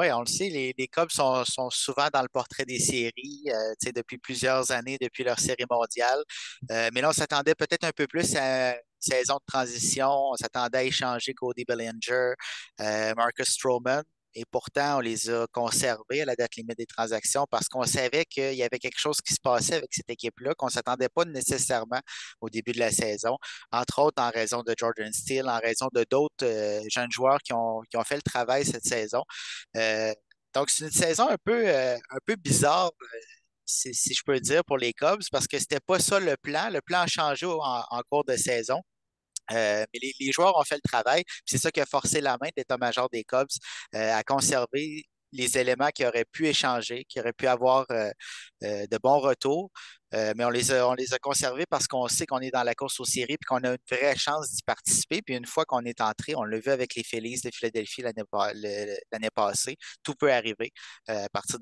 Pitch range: 115-140 Hz